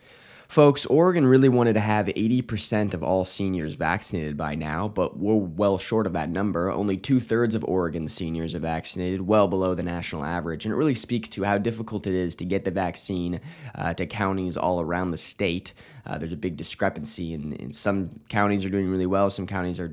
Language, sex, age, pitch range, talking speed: English, male, 20-39, 90-110 Hz, 200 wpm